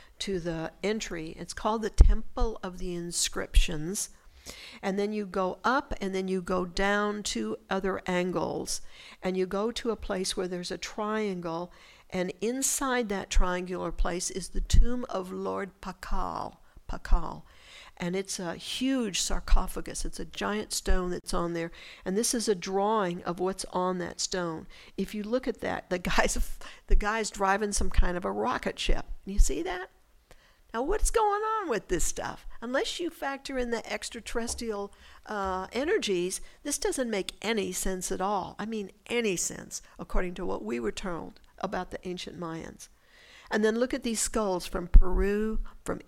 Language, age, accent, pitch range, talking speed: English, 60-79, American, 180-220 Hz, 170 wpm